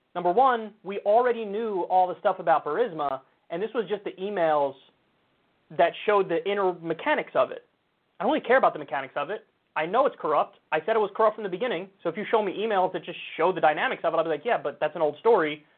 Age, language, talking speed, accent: 30-49, English, 255 wpm, American